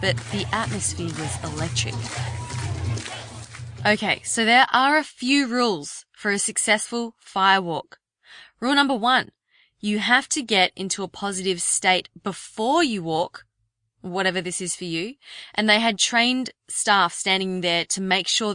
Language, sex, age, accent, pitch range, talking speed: English, female, 20-39, Australian, 170-235 Hz, 150 wpm